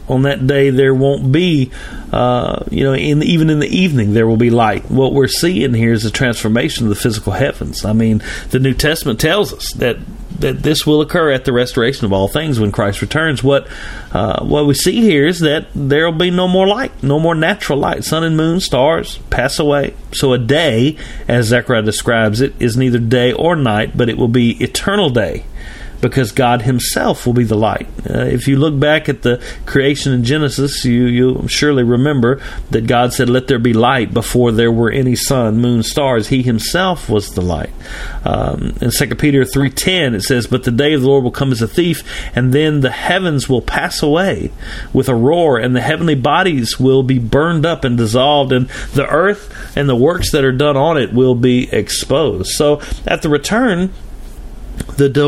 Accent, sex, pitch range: American, male, 120-150 Hz